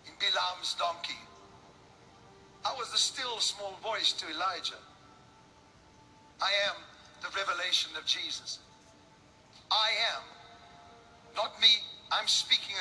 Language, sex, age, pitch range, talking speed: English, male, 50-69, 220-315 Hz, 105 wpm